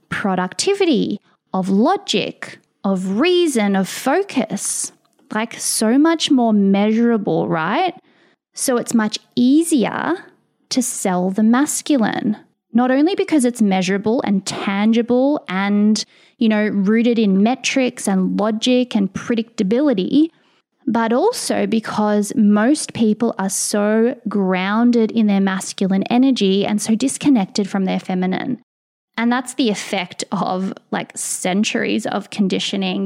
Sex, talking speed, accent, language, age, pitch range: female, 120 wpm, Australian, English, 20-39, 195-250 Hz